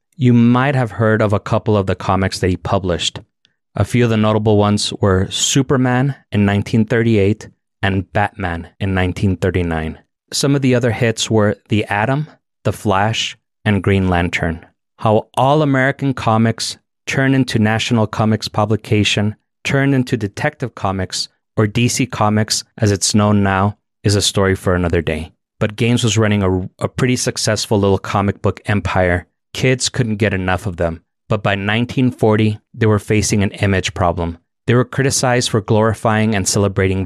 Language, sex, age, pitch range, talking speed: English, male, 30-49, 100-120 Hz, 160 wpm